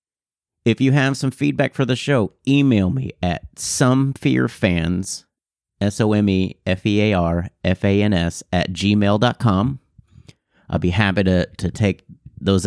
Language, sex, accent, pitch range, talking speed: English, male, American, 90-115 Hz, 105 wpm